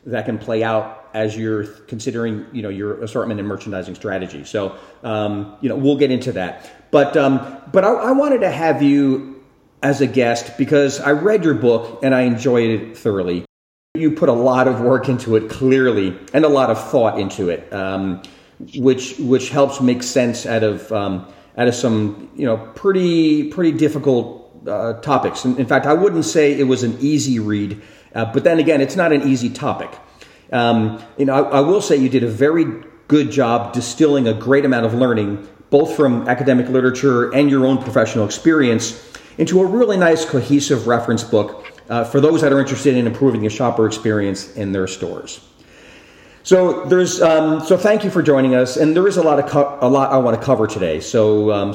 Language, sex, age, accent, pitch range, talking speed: English, male, 40-59, American, 115-145 Hz, 200 wpm